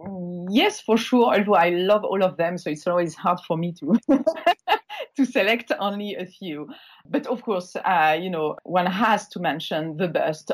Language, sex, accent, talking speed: English, female, French, 190 wpm